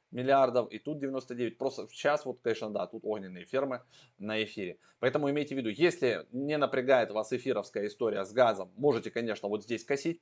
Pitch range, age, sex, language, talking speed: 105-135 Hz, 20-39, male, Russian, 180 wpm